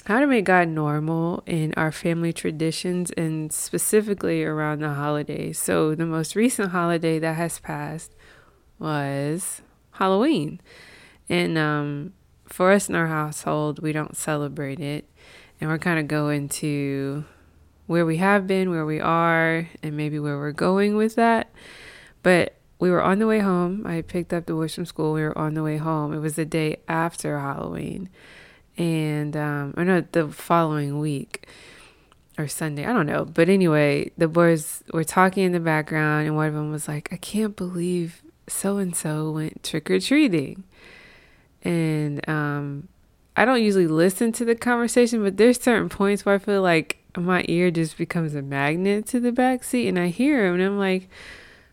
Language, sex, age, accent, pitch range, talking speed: English, female, 20-39, American, 150-190 Hz, 170 wpm